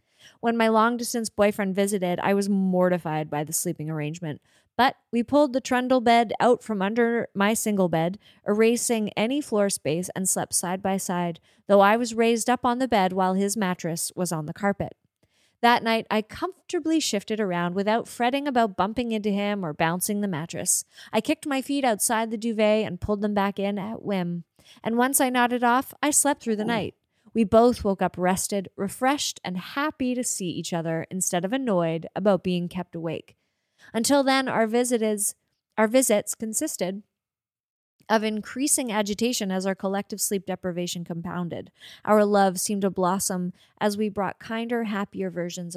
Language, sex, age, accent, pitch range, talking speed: English, female, 20-39, American, 185-230 Hz, 175 wpm